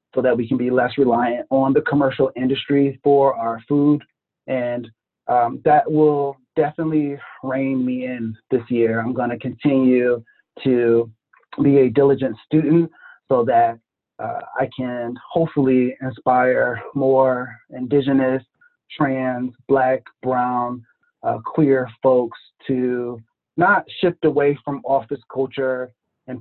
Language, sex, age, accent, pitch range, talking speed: English, male, 30-49, American, 120-140 Hz, 125 wpm